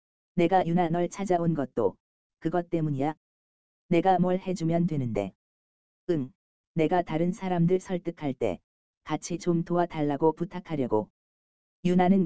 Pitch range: 115-180 Hz